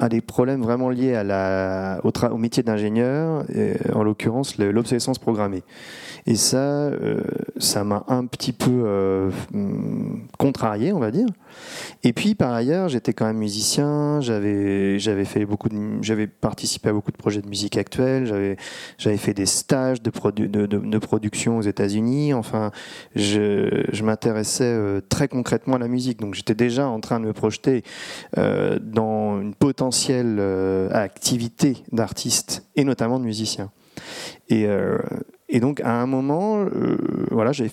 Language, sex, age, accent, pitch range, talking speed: French, male, 30-49, French, 105-130 Hz, 165 wpm